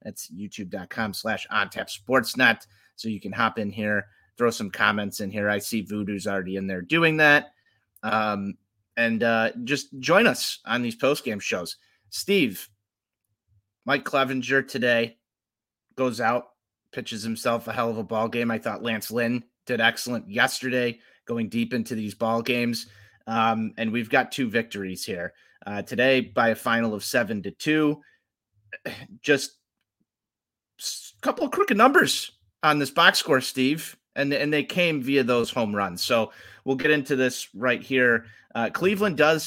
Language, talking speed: English, 160 wpm